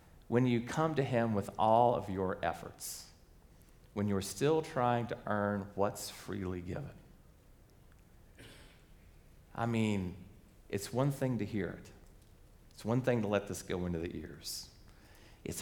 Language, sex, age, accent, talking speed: English, male, 40-59, American, 145 wpm